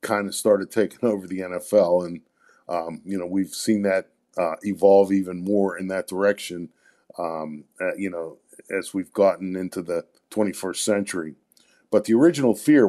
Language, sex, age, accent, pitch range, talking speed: English, male, 50-69, American, 95-110 Hz, 170 wpm